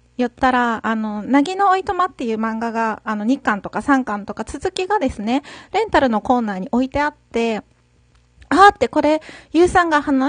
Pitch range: 230-300 Hz